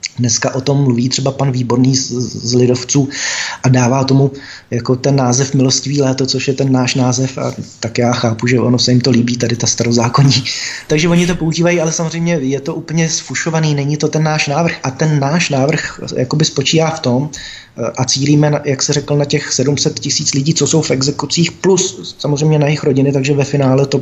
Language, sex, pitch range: Czech, male, 130-155 Hz